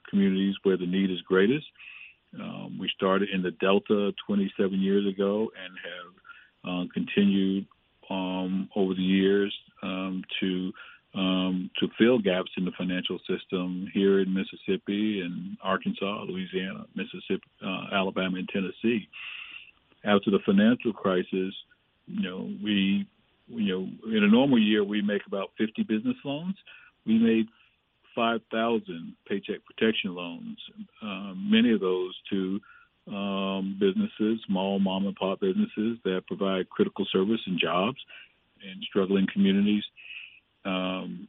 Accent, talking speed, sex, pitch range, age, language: American, 135 wpm, male, 95-120 Hz, 50-69, English